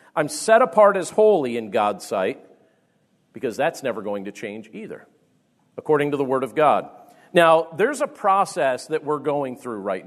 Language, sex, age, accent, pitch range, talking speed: English, male, 40-59, American, 145-190 Hz, 180 wpm